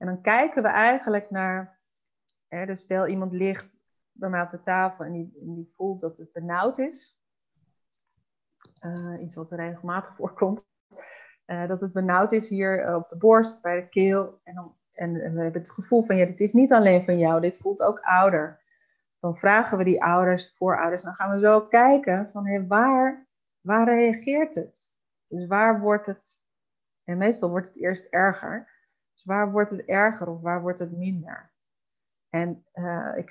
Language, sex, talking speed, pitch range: Dutch, female, 185 wpm, 180-220 Hz